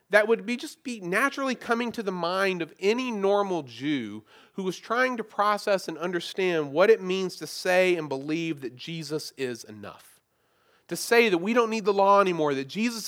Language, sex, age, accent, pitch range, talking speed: English, male, 30-49, American, 155-215 Hz, 195 wpm